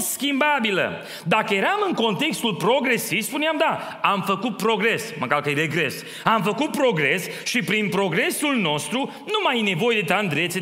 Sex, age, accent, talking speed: male, 30-49, native, 160 wpm